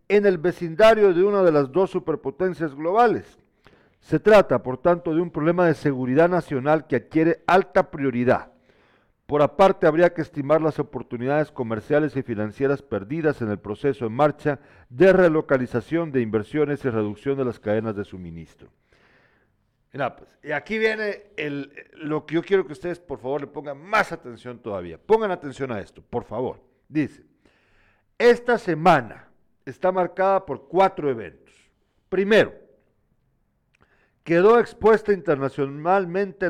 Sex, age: male, 50-69